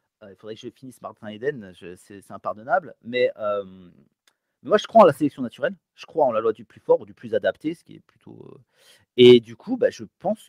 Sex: male